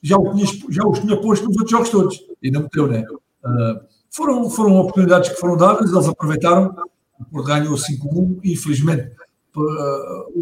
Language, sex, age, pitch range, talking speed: Portuguese, male, 60-79, 130-160 Hz, 160 wpm